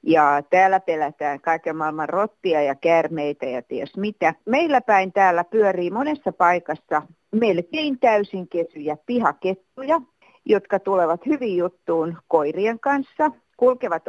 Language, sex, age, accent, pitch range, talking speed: Finnish, female, 50-69, native, 165-230 Hz, 120 wpm